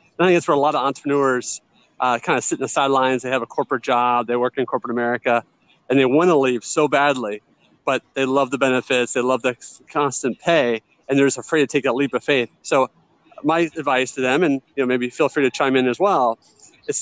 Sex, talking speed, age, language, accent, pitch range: male, 245 wpm, 30-49, English, American, 130-155 Hz